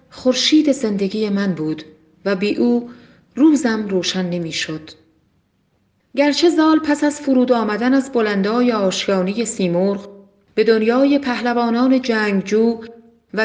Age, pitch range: 40-59, 190-255 Hz